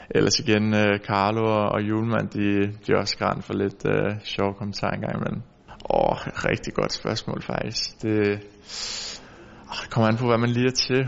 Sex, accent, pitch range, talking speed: male, native, 100-105 Hz, 160 wpm